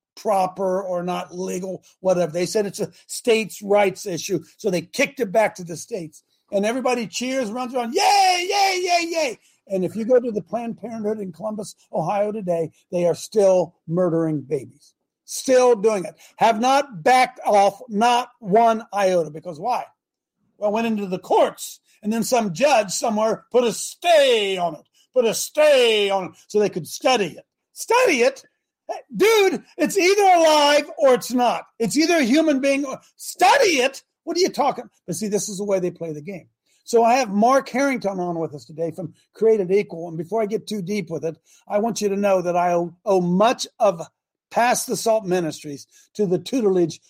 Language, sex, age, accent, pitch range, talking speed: English, male, 50-69, American, 180-230 Hz, 190 wpm